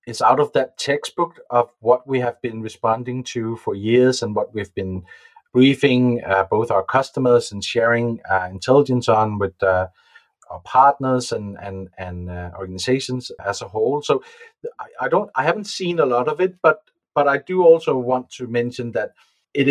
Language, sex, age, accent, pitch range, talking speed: English, male, 30-49, Danish, 110-145 Hz, 185 wpm